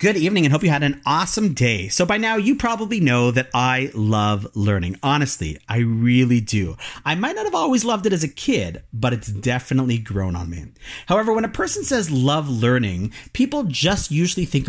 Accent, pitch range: American, 115-165 Hz